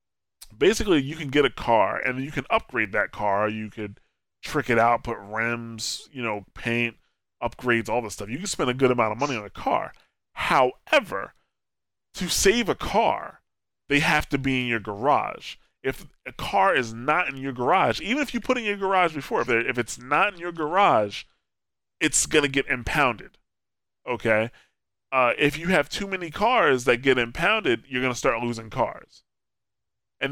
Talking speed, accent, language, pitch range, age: 185 wpm, American, English, 115-140 Hz, 20-39